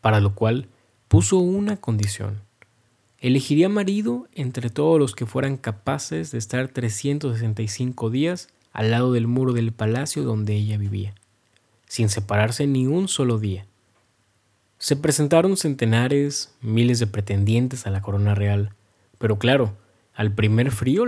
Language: Spanish